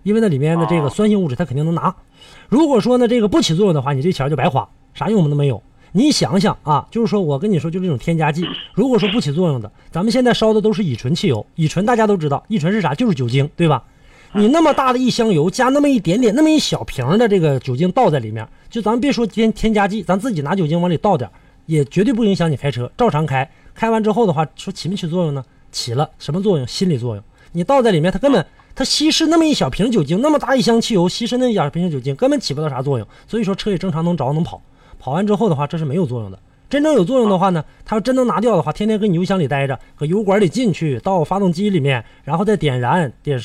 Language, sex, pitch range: Chinese, male, 145-215 Hz